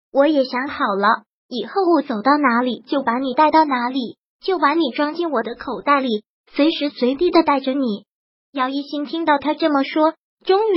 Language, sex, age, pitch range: Chinese, male, 20-39, 265-325 Hz